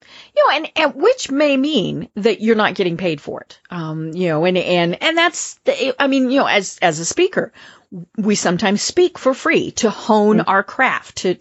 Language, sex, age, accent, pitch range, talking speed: English, female, 40-59, American, 185-270 Hz, 210 wpm